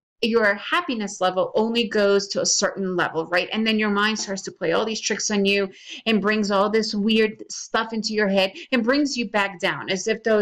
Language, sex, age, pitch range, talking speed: English, female, 30-49, 200-260 Hz, 225 wpm